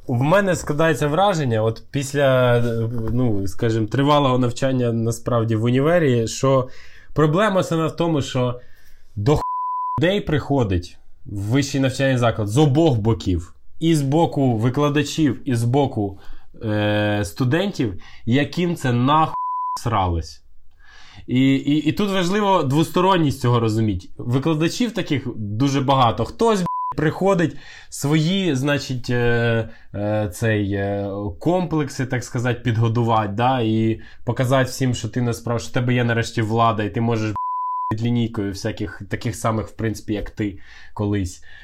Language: Ukrainian